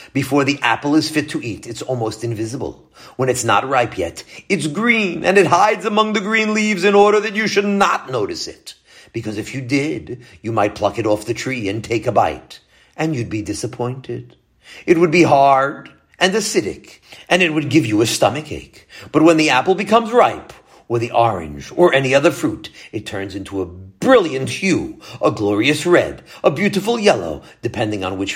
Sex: male